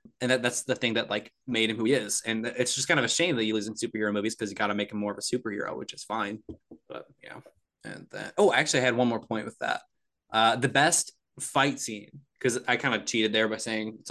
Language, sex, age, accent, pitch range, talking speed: English, male, 20-39, American, 110-130 Hz, 275 wpm